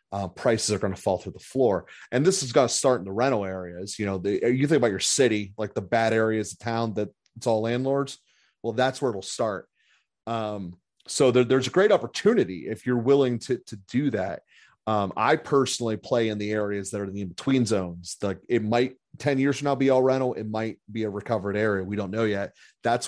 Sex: male